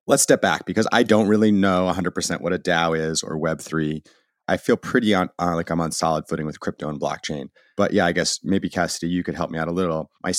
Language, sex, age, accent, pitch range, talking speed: English, male, 30-49, American, 85-95 Hz, 250 wpm